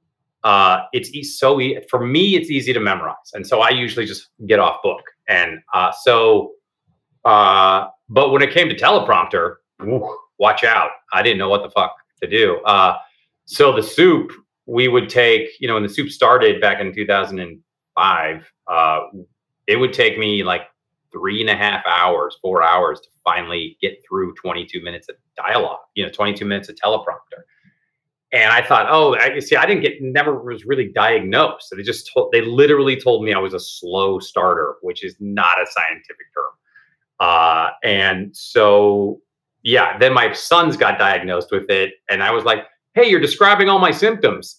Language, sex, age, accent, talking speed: English, male, 30-49, American, 185 wpm